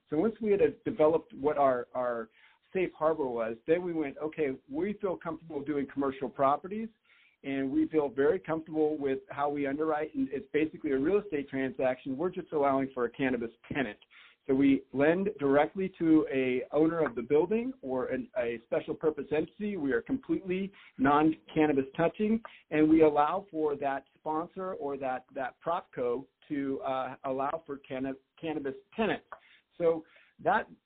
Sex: male